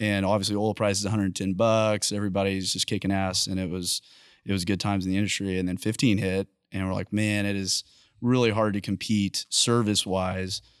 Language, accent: English, American